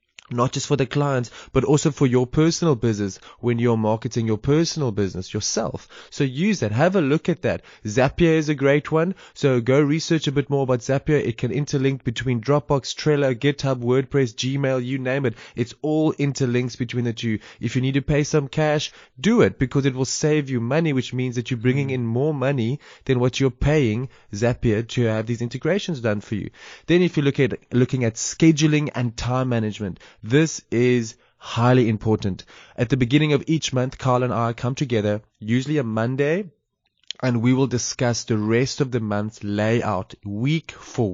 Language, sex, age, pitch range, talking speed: English, male, 20-39, 120-145 Hz, 195 wpm